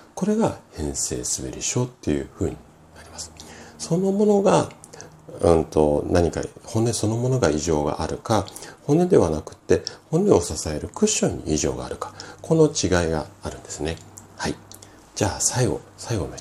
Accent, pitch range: native, 75-120 Hz